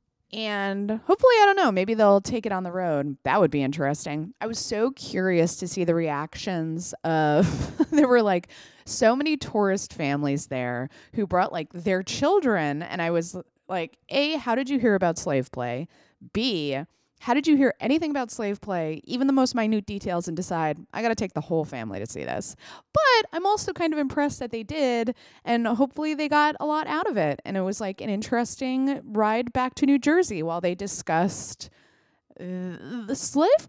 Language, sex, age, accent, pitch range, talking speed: English, female, 20-39, American, 170-255 Hz, 195 wpm